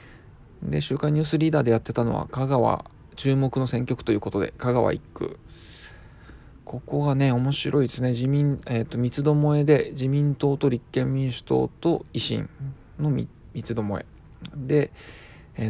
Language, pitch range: Japanese, 115-145 Hz